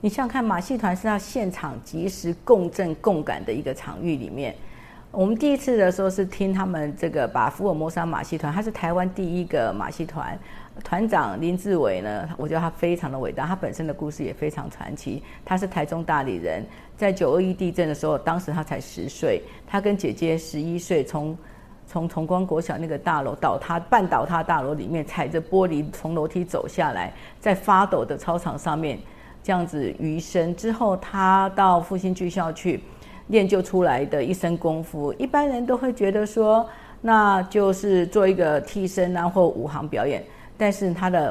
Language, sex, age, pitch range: Chinese, female, 50-69, 160-200 Hz